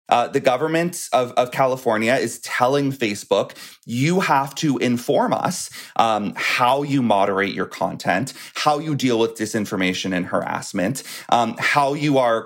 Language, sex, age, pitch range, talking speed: English, male, 30-49, 110-160 Hz, 150 wpm